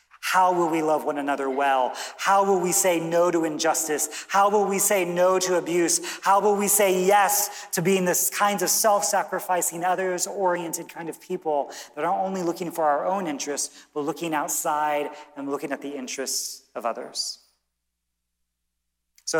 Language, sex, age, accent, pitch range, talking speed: English, male, 40-59, American, 135-195 Hz, 170 wpm